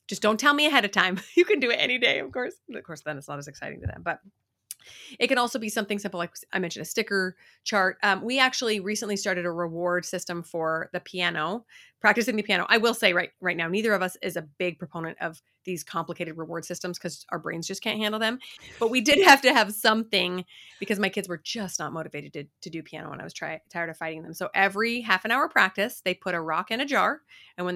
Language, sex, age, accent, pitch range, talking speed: English, female, 30-49, American, 170-225 Hz, 255 wpm